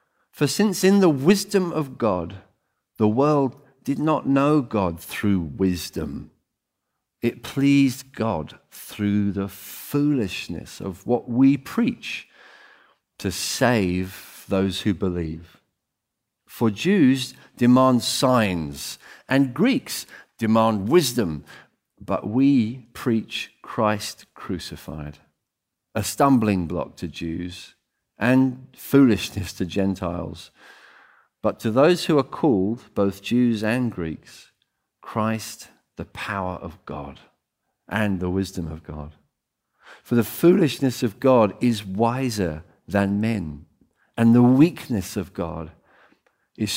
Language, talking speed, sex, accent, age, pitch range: English, 110 wpm, male, British, 50-69, 95-130 Hz